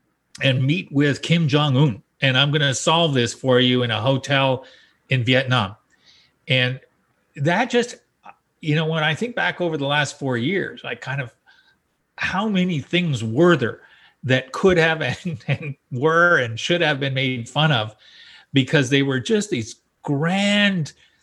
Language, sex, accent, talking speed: English, male, American, 165 wpm